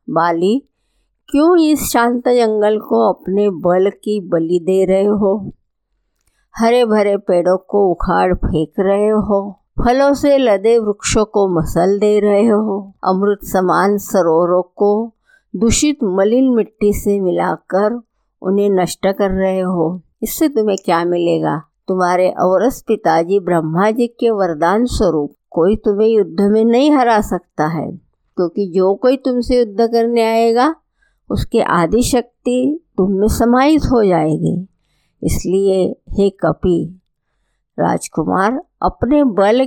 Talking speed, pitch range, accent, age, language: 125 wpm, 180-230 Hz, native, 50-69, Hindi